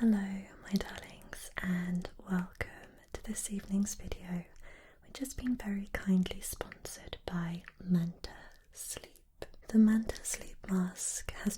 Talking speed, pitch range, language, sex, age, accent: 120 wpm, 180-215 Hz, English, female, 20-39, British